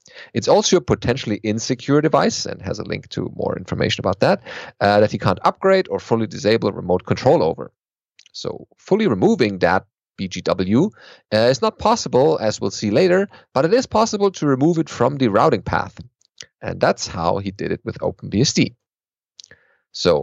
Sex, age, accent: male, 40-59, German